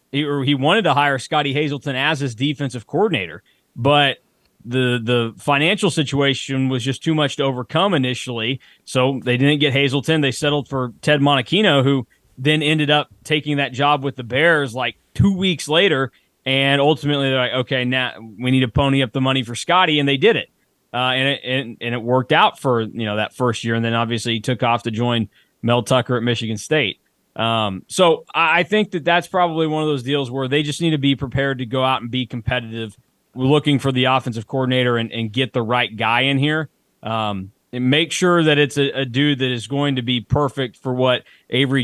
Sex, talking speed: male, 210 wpm